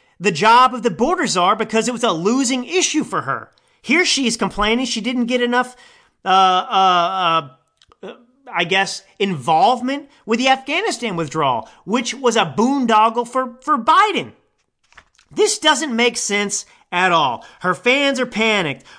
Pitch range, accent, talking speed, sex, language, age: 165-245 Hz, American, 150 wpm, male, English, 30-49